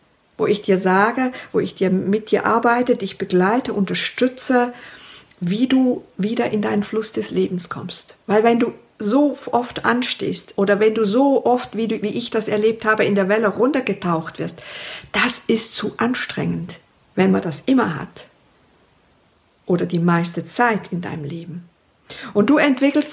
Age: 50-69